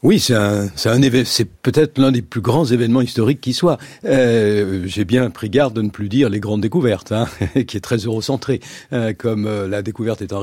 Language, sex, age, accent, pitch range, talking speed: French, male, 50-69, French, 105-135 Hz, 225 wpm